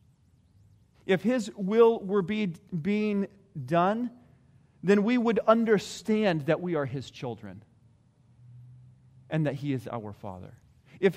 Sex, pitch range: male, 155-230 Hz